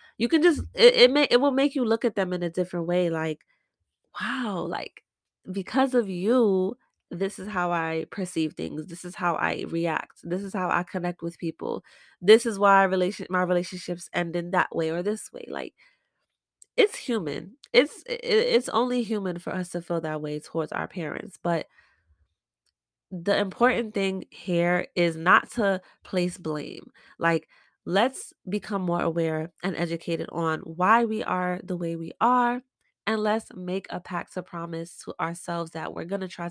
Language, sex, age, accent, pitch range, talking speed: English, female, 20-39, American, 170-210 Hz, 180 wpm